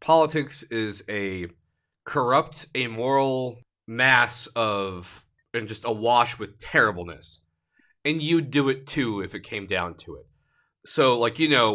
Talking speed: 140 wpm